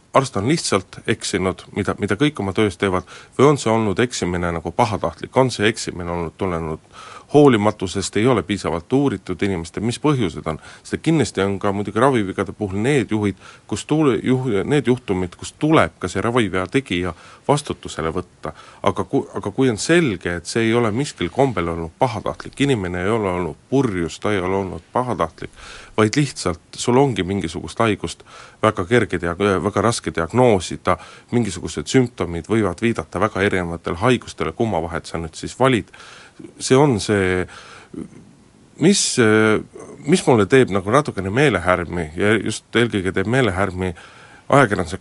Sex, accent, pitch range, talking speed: male, native, 90-120 Hz, 160 wpm